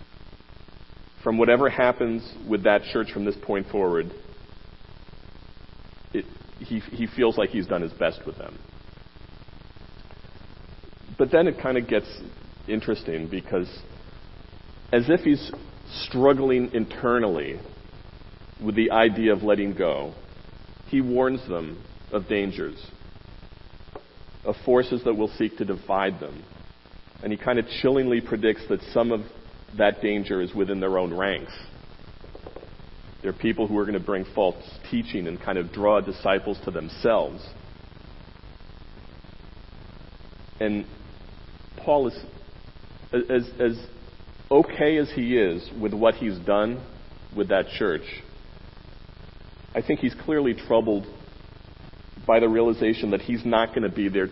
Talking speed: 130 wpm